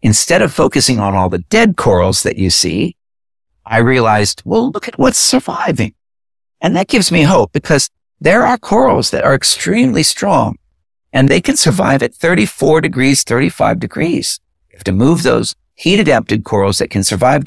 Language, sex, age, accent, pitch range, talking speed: English, male, 60-79, American, 90-125 Hz, 175 wpm